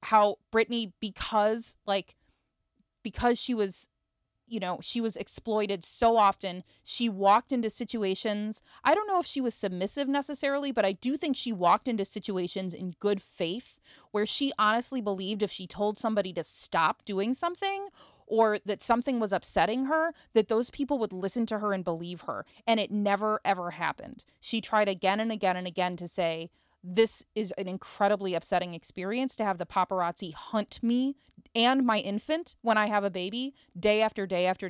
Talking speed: 180 wpm